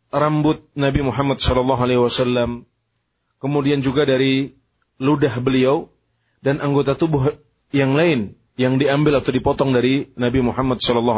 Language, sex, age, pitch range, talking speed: Indonesian, male, 30-49, 120-135 Hz, 130 wpm